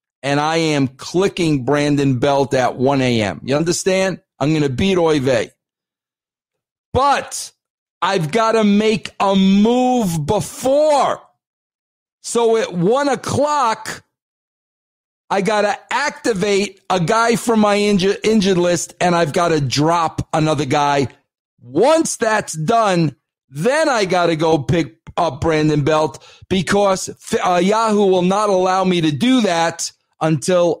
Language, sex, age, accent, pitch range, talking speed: English, male, 50-69, American, 155-205 Hz, 135 wpm